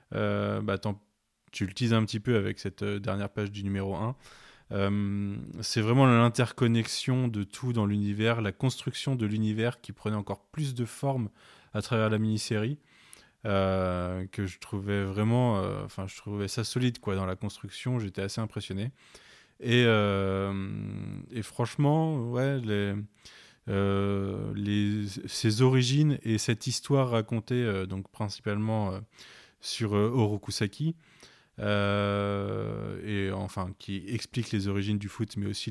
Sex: male